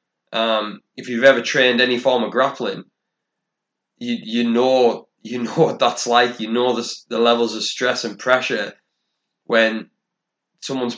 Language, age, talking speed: English, 20-39, 155 wpm